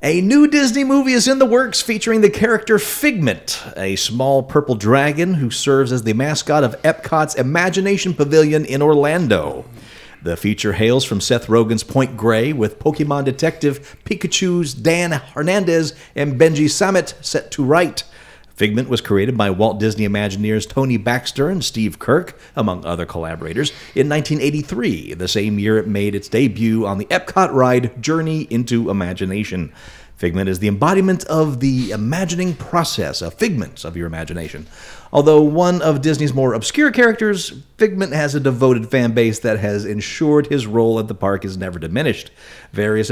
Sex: male